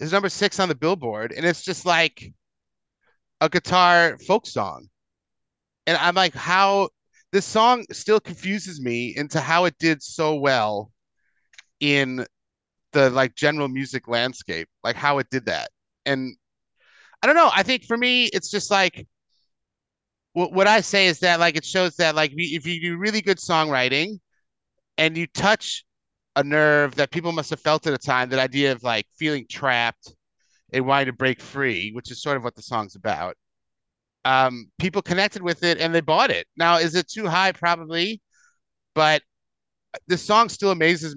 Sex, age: male, 30-49